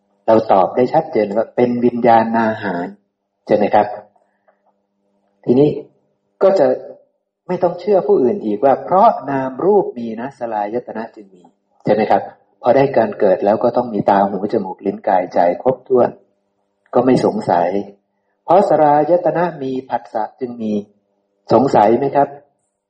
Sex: male